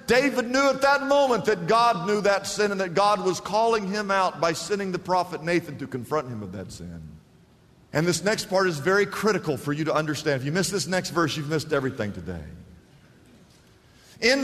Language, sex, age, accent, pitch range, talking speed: English, male, 50-69, American, 170-250 Hz, 210 wpm